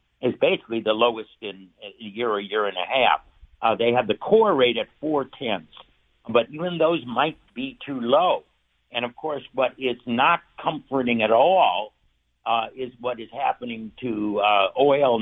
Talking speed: 180 wpm